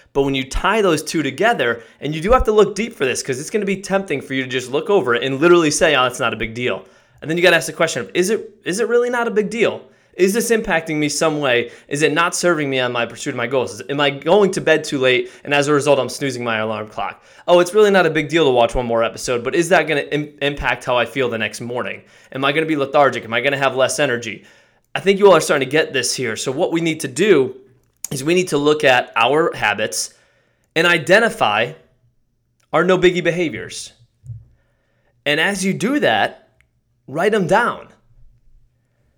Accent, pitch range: American, 120-175 Hz